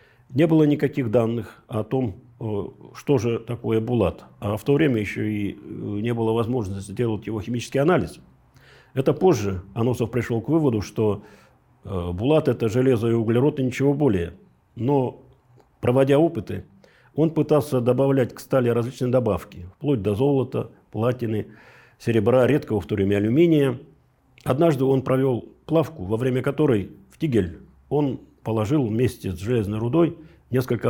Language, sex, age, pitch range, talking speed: Russian, male, 50-69, 105-135 Hz, 145 wpm